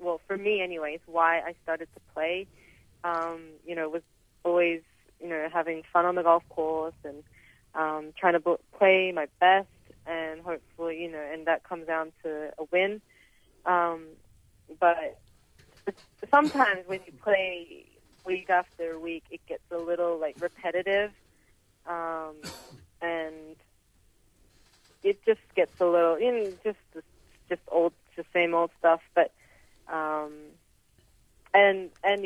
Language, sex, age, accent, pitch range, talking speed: English, female, 30-49, American, 155-180 Hz, 145 wpm